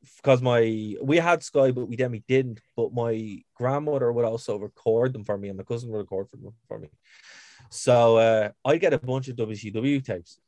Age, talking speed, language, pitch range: 20-39, 205 wpm, English, 115-140 Hz